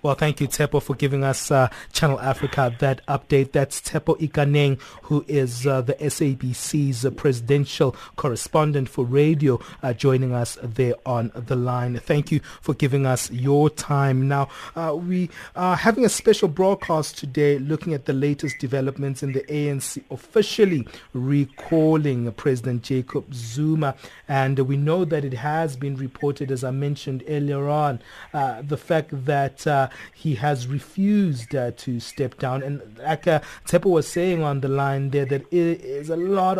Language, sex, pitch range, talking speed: English, male, 135-155 Hz, 165 wpm